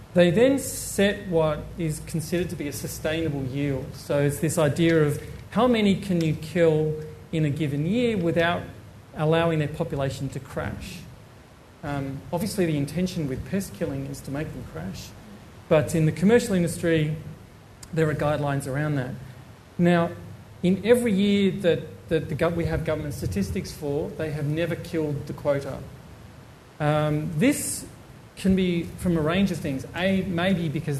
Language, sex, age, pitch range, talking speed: English, male, 40-59, 140-170 Hz, 165 wpm